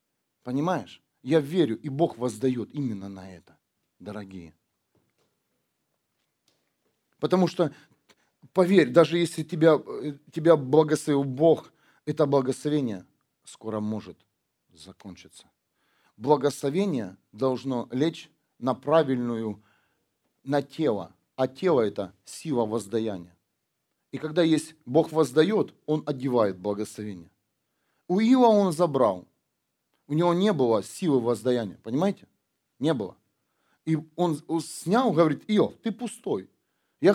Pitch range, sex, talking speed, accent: 120-165 Hz, male, 105 wpm, native